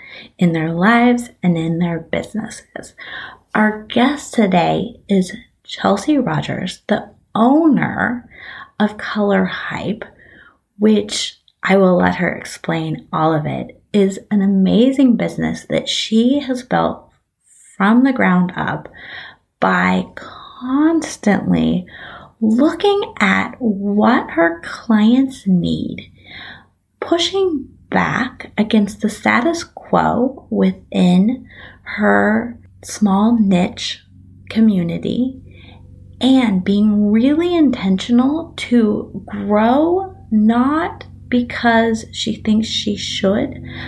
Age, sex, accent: 30-49, female, American